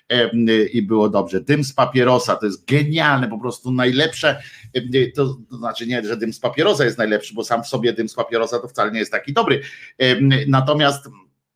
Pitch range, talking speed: 115-140 Hz, 185 wpm